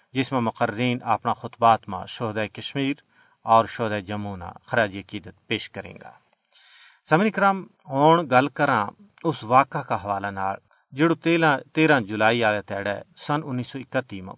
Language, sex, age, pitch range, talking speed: Urdu, male, 40-59, 110-150 Hz, 145 wpm